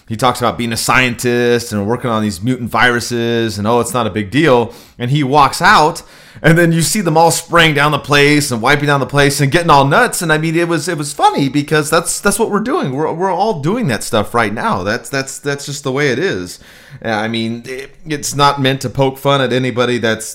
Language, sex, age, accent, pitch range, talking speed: English, male, 30-49, American, 100-140 Hz, 245 wpm